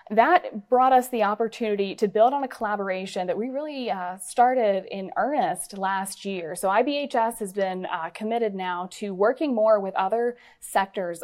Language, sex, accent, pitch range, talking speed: English, female, American, 185-235 Hz, 170 wpm